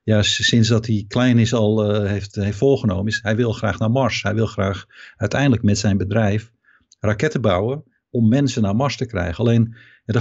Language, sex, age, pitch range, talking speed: Dutch, male, 50-69, 105-130 Hz, 195 wpm